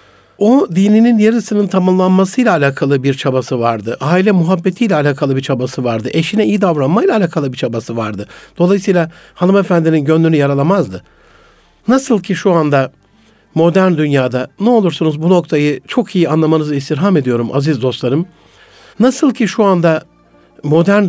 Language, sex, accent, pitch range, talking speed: Turkish, male, native, 145-200 Hz, 135 wpm